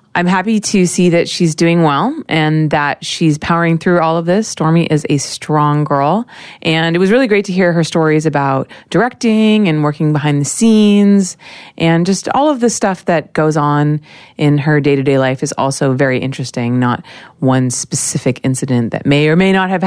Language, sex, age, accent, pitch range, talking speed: English, female, 30-49, American, 150-180 Hz, 195 wpm